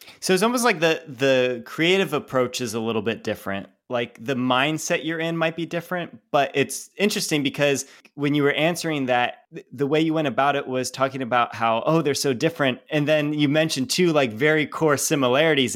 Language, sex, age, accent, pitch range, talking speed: English, male, 20-39, American, 120-150 Hz, 200 wpm